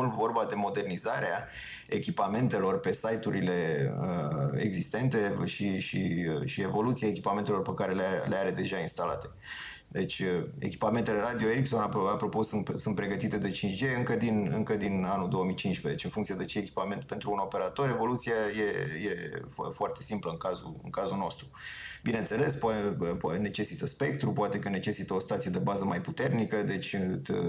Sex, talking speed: male, 150 wpm